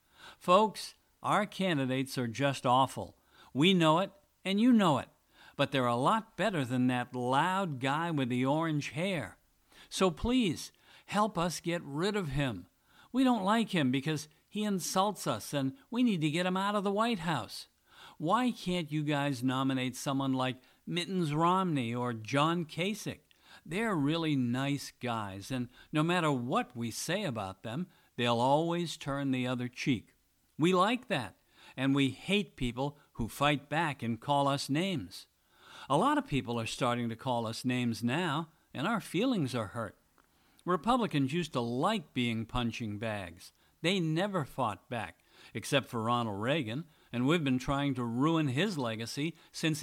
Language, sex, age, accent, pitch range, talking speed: English, male, 60-79, American, 125-180 Hz, 165 wpm